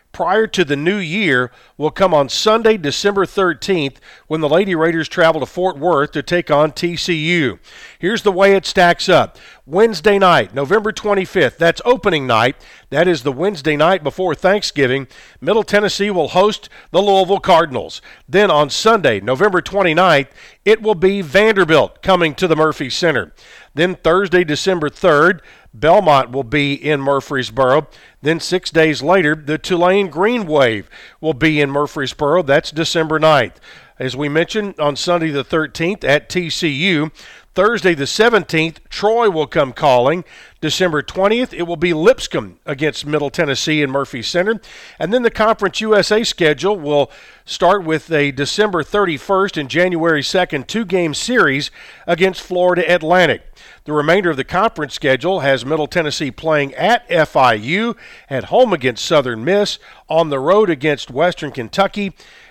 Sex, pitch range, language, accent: male, 150-195 Hz, English, American